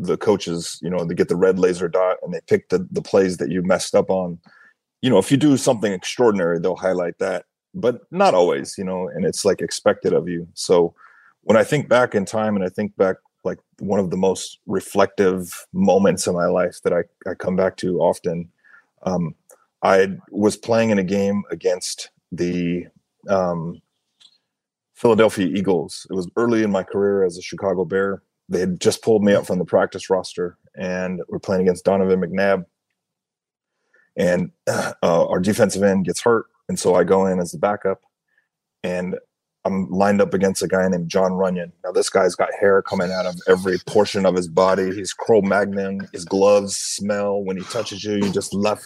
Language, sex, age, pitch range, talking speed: English, male, 30-49, 90-105 Hz, 195 wpm